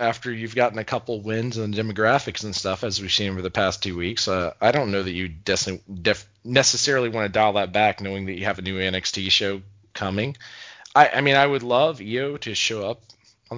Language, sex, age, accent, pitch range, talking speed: English, male, 30-49, American, 90-115 Hz, 225 wpm